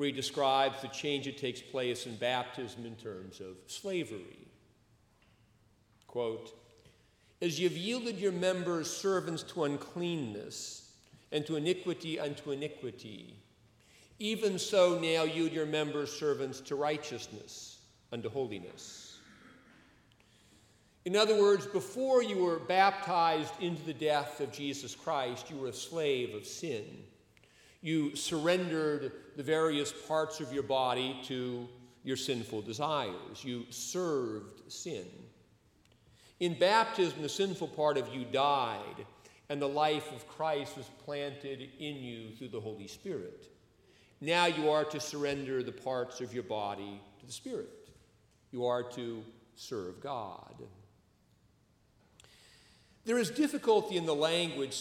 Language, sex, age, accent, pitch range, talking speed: English, male, 50-69, American, 120-165 Hz, 130 wpm